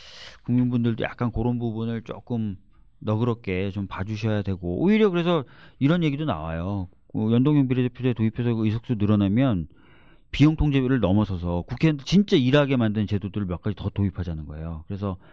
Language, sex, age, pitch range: Korean, male, 40-59, 95-130 Hz